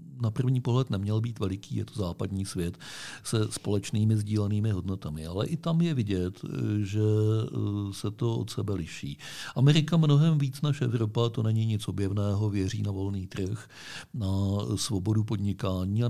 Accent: native